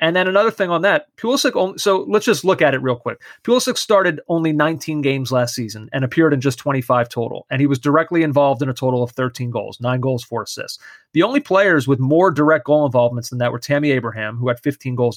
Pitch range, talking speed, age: 130-175 Hz, 240 wpm, 30-49